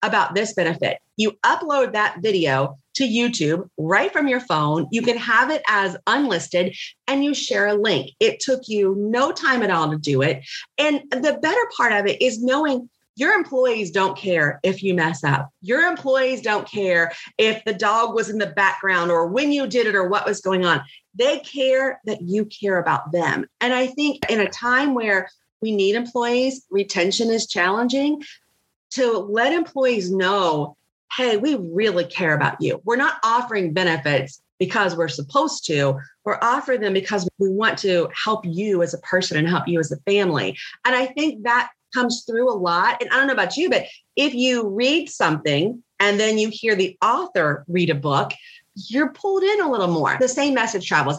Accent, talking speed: American, 195 wpm